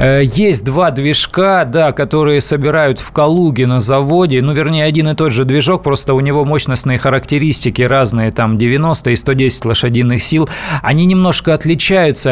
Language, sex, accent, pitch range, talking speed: Russian, male, native, 125-155 Hz, 155 wpm